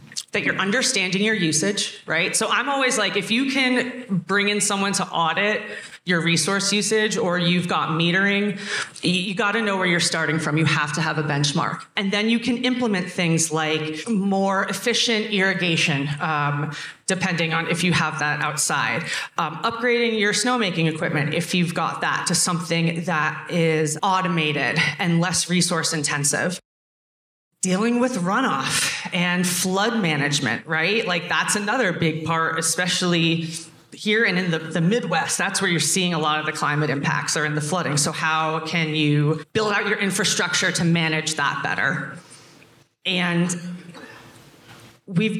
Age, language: 30-49, English